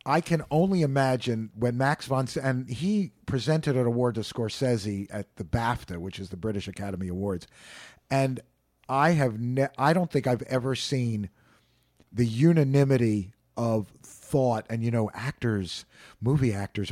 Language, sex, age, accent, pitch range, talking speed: English, male, 50-69, American, 110-150 Hz, 155 wpm